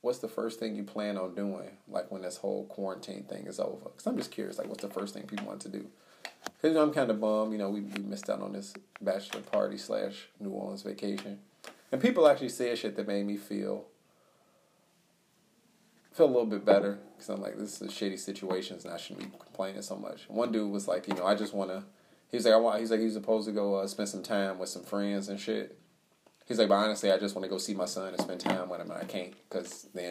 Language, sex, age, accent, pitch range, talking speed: English, male, 30-49, American, 95-110 Hz, 255 wpm